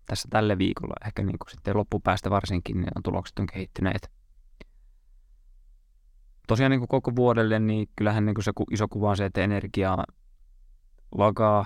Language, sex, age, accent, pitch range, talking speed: Finnish, male, 20-39, native, 95-105 Hz, 150 wpm